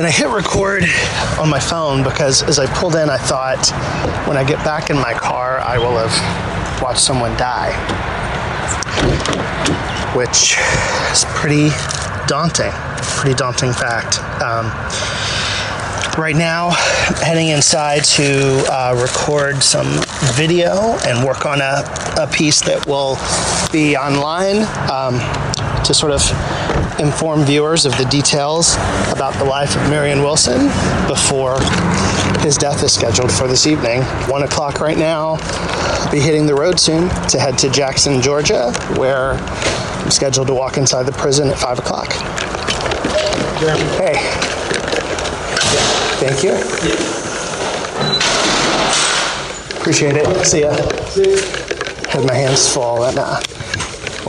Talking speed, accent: 130 wpm, American